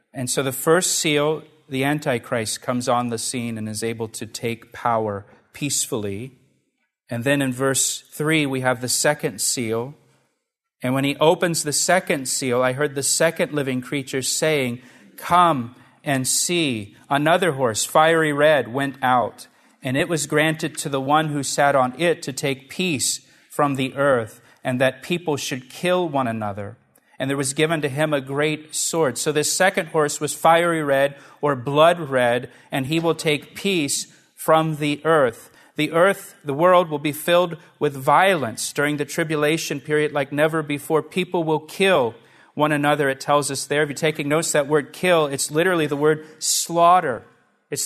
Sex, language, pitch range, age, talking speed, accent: male, English, 135-160 Hz, 40-59, 175 wpm, American